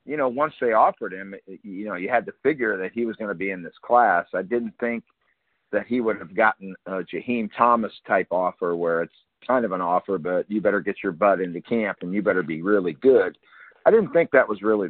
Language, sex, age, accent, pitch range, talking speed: English, male, 50-69, American, 95-120 Hz, 240 wpm